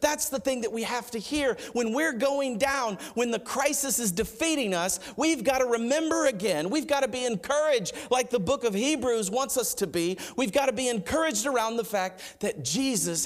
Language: English